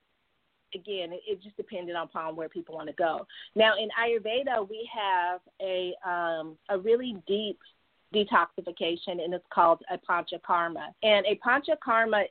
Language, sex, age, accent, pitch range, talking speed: English, female, 30-49, American, 175-215 Hz, 150 wpm